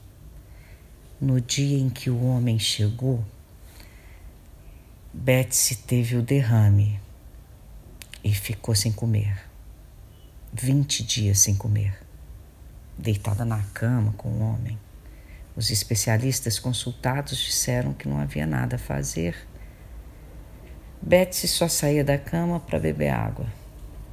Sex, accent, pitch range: female, Brazilian, 100-130 Hz